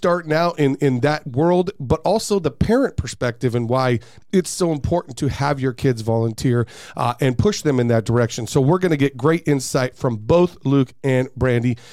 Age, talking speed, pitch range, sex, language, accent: 40-59, 200 wpm, 130-170 Hz, male, English, American